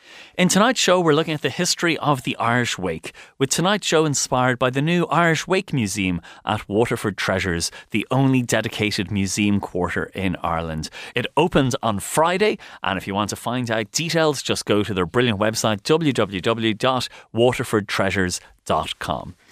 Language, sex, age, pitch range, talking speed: English, male, 30-49, 100-150 Hz, 160 wpm